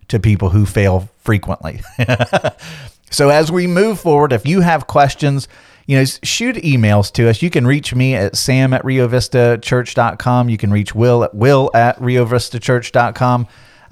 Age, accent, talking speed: 40-59, American, 155 wpm